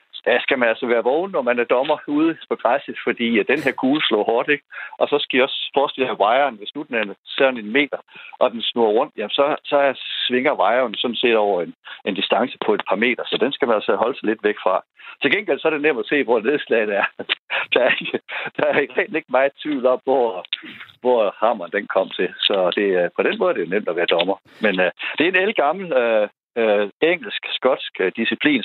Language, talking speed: Danish, 235 wpm